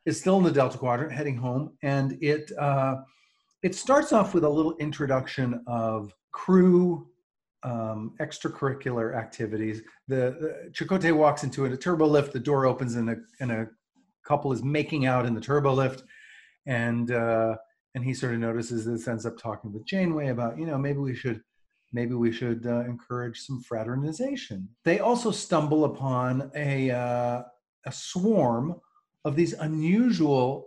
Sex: male